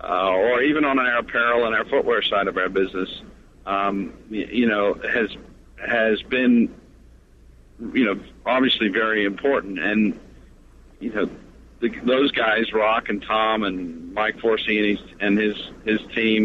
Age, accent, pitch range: 50-69, American, 95-115 Hz